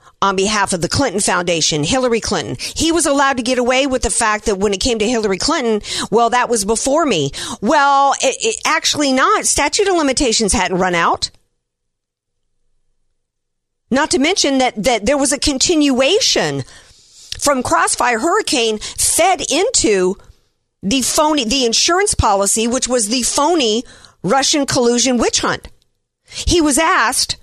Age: 50-69